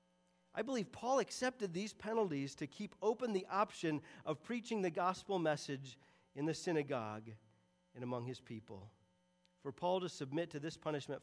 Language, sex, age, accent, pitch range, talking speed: English, male, 40-59, American, 140-205 Hz, 160 wpm